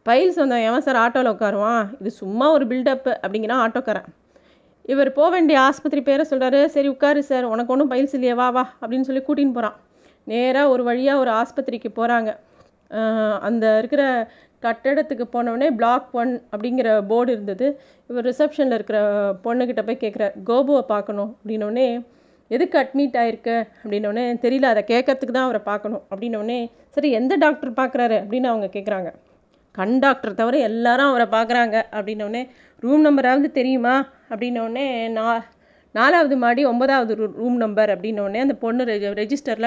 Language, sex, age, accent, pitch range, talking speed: Tamil, female, 30-49, native, 220-270 Hz, 140 wpm